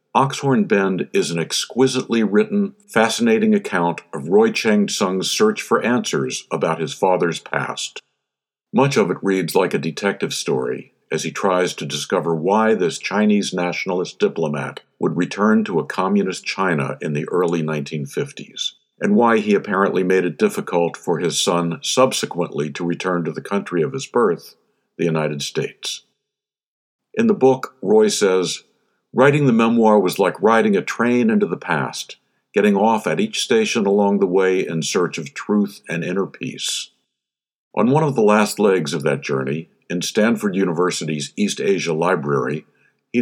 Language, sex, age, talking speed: English, male, 60-79, 160 wpm